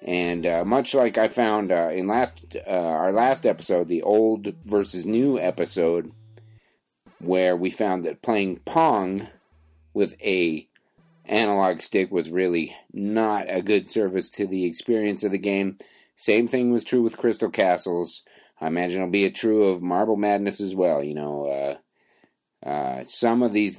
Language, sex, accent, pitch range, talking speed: English, male, American, 85-105 Hz, 165 wpm